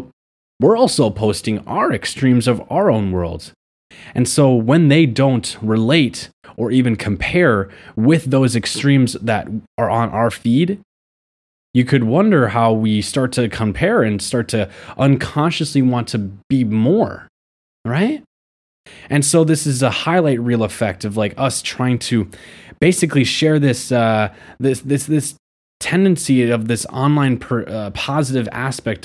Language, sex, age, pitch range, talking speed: English, male, 20-39, 110-140 Hz, 145 wpm